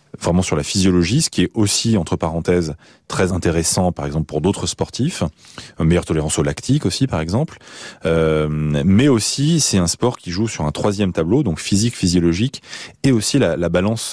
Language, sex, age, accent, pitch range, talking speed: French, male, 30-49, French, 80-100 Hz, 185 wpm